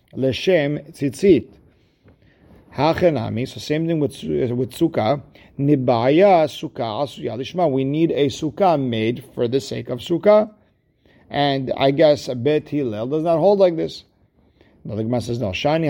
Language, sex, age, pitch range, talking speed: English, male, 50-69, 120-150 Hz, 145 wpm